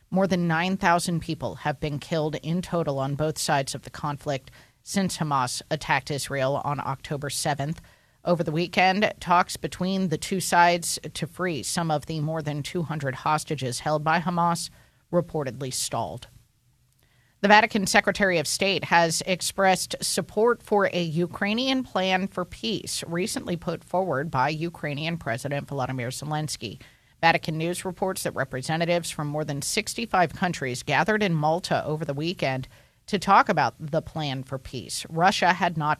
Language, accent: English, American